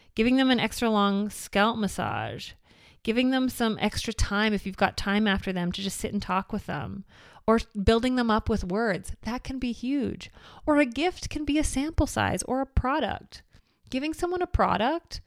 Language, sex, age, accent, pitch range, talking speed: English, female, 30-49, American, 180-230 Hz, 195 wpm